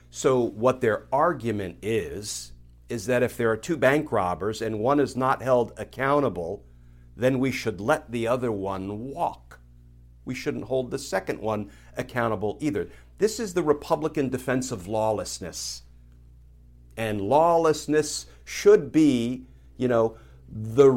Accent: American